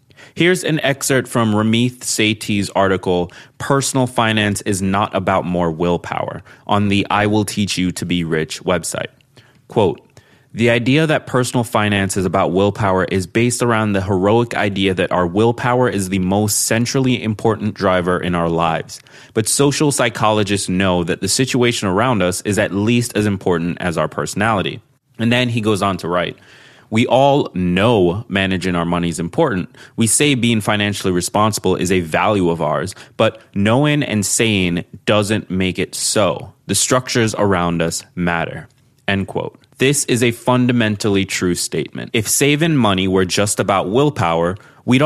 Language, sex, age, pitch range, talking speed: English, male, 20-39, 95-125 Hz, 160 wpm